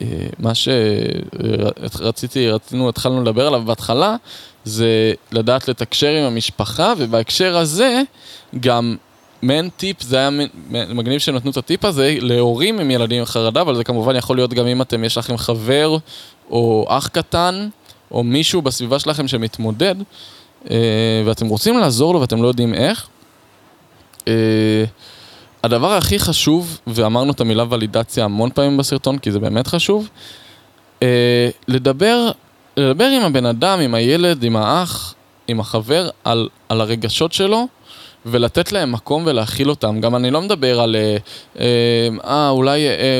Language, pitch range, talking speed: Hebrew, 115-145 Hz, 140 wpm